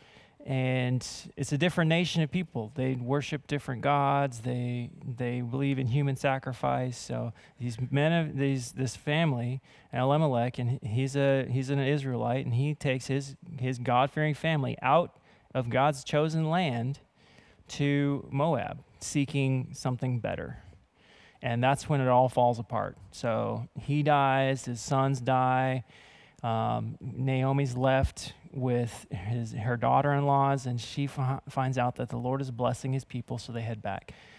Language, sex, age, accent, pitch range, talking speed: English, male, 20-39, American, 120-140 Hz, 145 wpm